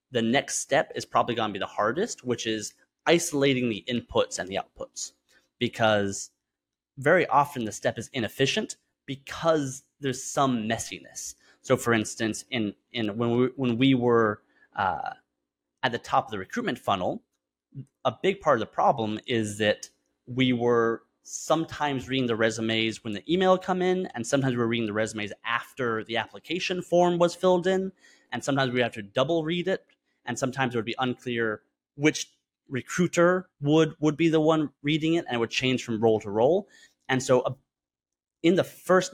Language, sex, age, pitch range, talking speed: English, male, 30-49, 110-140 Hz, 180 wpm